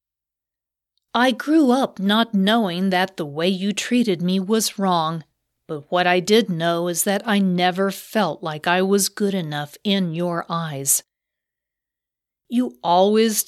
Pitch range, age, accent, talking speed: 160-215 Hz, 40-59, American, 145 wpm